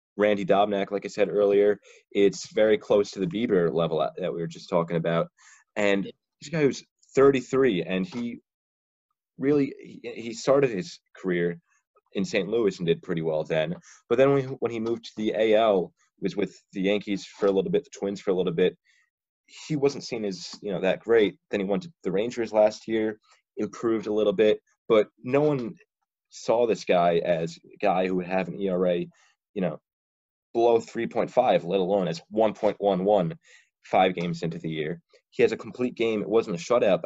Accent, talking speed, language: American, 190 wpm, English